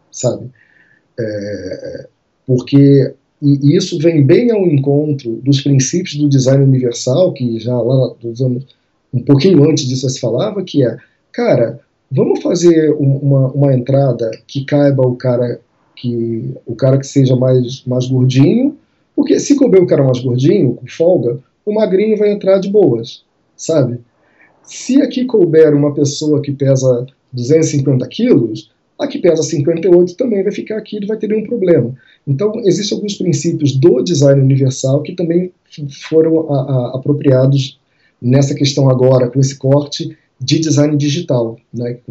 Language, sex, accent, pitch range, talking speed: Portuguese, male, Brazilian, 125-160 Hz, 150 wpm